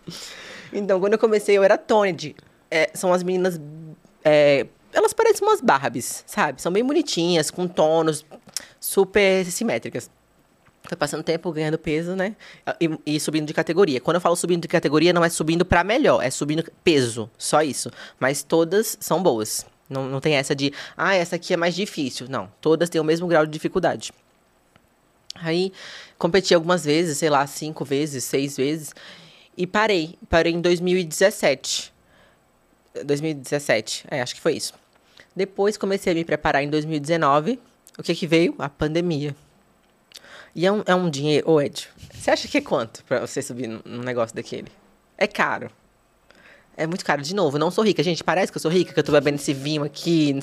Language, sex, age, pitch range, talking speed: Portuguese, female, 20-39, 150-190 Hz, 180 wpm